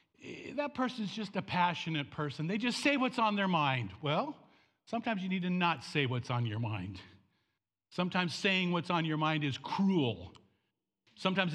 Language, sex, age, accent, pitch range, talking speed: English, male, 50-69, American, 155-235 Hz, 170 wpm